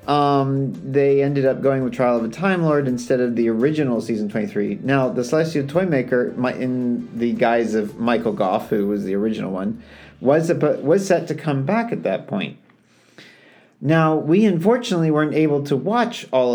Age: 40-59